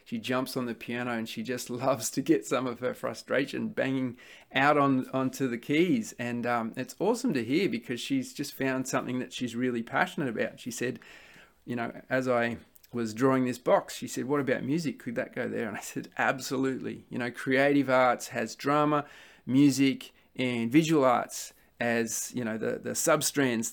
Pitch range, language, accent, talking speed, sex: 120-135 Hz, English, Australian, 190 wpm, male